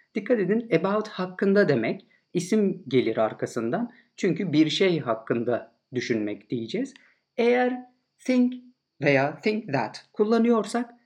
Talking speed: 110 wpm